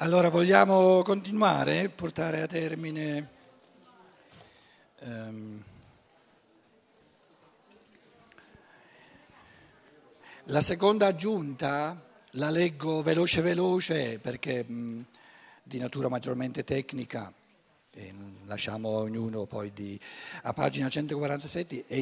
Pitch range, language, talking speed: 125-175 Hz, Italian, 80 wpm